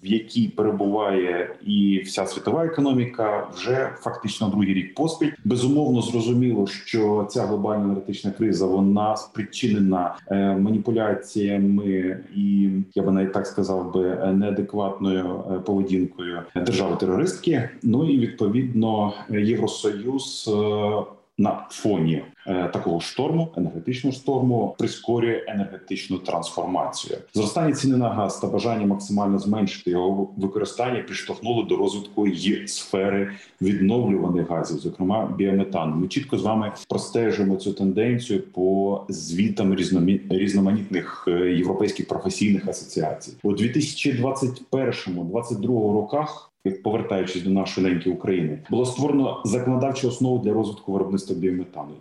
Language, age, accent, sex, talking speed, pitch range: Ukrainian, 30-49, native, male, 110 wpm, 95-120 Hz